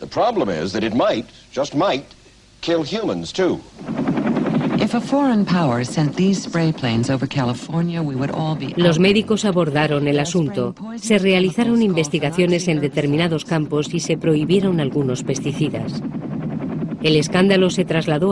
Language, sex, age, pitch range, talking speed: Spanish, female, 50-69, 145-185 Hz, 105 wpm